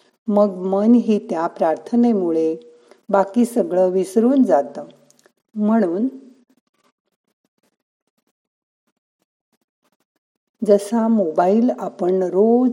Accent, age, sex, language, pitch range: native, 50-69, female, Marathi, 170-230 Hz